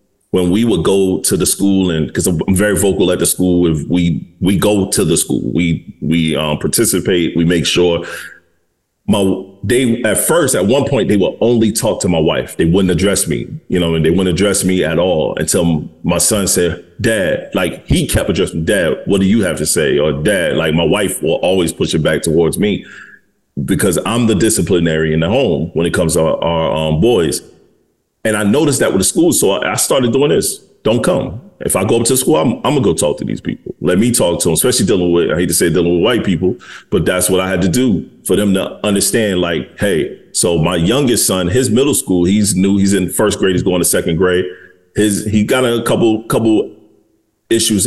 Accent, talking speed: American, 230 wpm